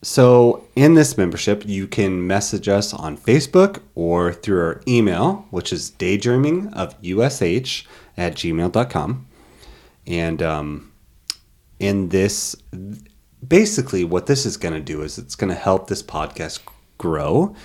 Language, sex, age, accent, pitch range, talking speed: English, male, 30-49, American, 85-125 Hz, 130 wpm